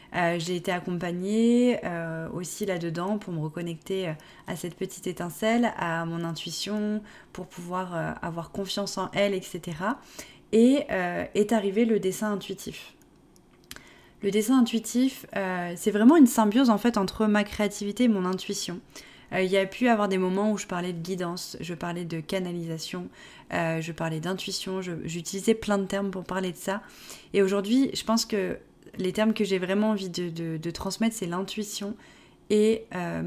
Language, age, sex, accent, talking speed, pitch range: French, 20-39, female, French, 175 wpm, 180-210 Hz